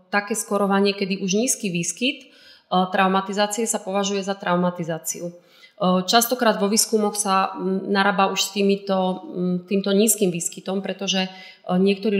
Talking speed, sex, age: 120 wpm, female, 30-49